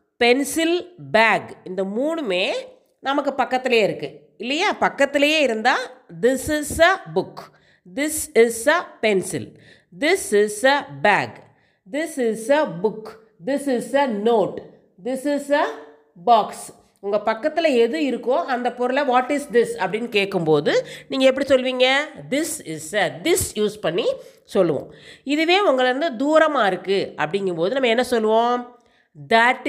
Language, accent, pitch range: Tamil, native, 205-290 Hz